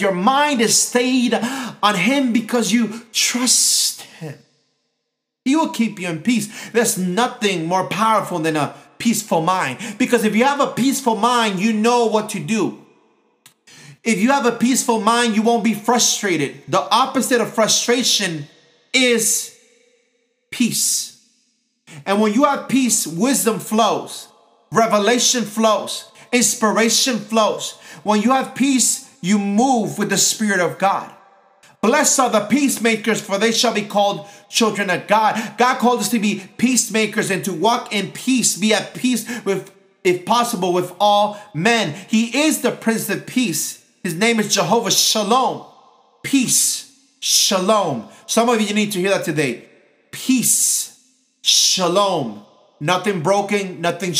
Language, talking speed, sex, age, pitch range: English, 145 wpm, male, 30-49, 195-240 Hz